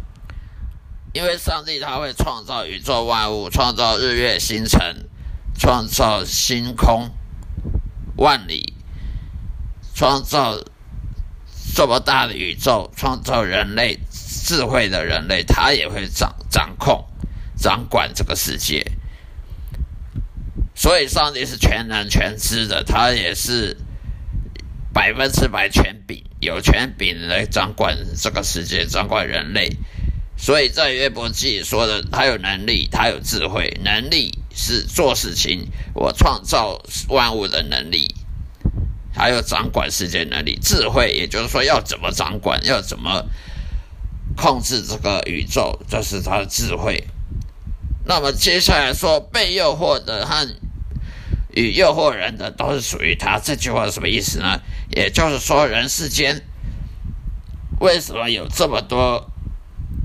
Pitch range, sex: 80-115 Hz, male